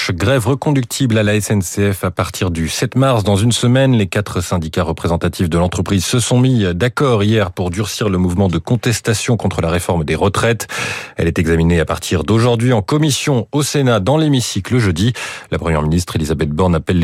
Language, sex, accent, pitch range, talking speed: French, male, French, 90-125 Hz, 190 wpm